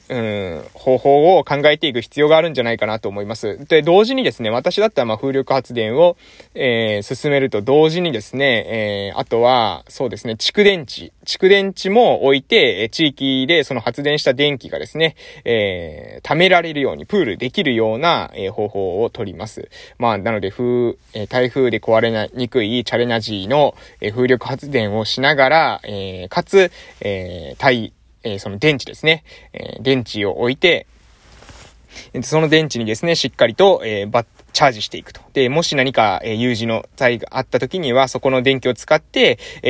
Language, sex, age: Japanese, male, 20-39